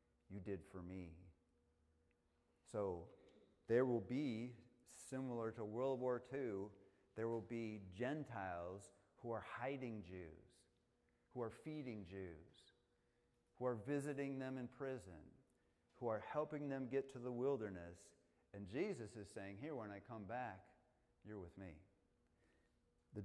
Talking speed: 135 wpm